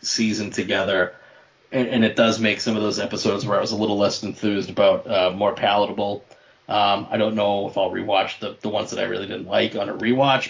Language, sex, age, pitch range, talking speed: English, male, 30-49, 105-120 Hz, 230 wpm